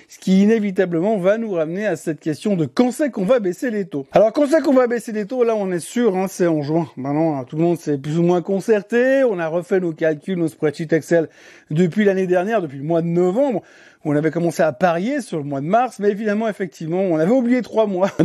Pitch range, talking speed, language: 170-235 Hz, 260 wpm, French